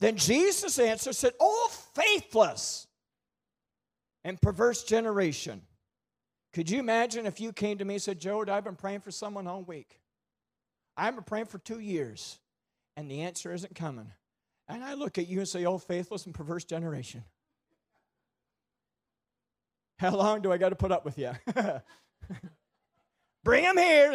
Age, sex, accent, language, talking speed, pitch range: 40-59, male, American, English, 155 wpm, 150-215 Hz